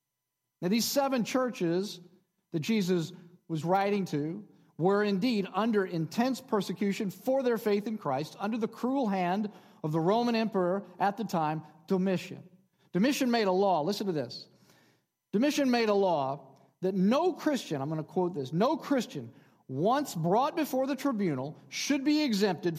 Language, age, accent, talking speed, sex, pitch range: English, 40-59, American, 160 wpm, male, 145-205 Hz